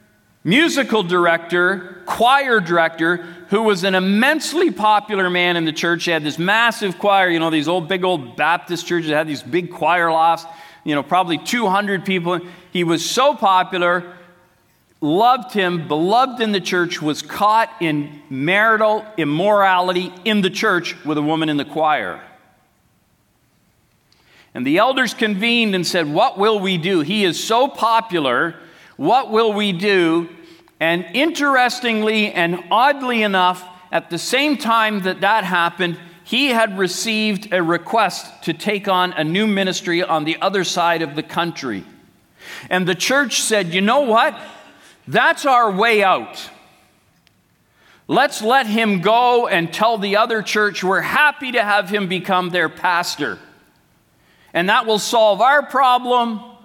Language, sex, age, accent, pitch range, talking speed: English, male, 50-69, American, 175-225 Hz, 150 wpm